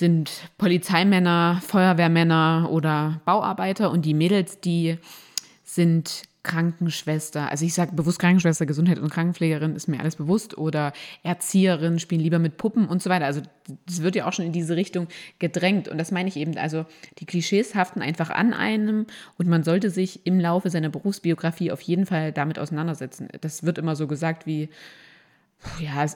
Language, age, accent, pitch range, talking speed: German, 20-39, German, 155-180 Hz, 170 wpm